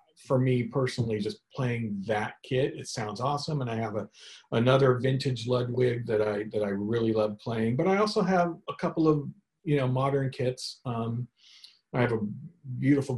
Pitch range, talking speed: 115-170 Hz, 180 wpm